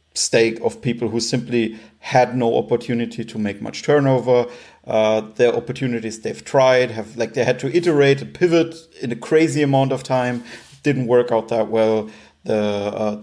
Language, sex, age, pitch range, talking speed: English, male, 40-59, 115-145 Hz, 175 wpm